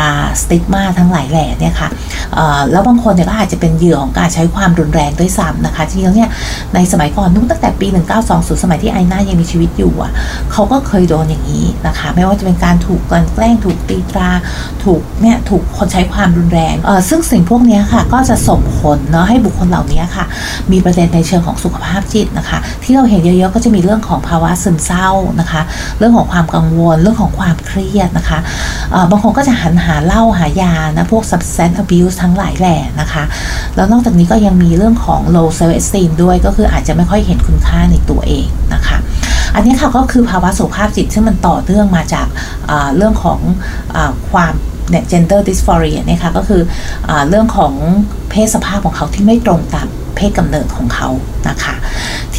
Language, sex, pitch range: Thai, female, 165-210 Hz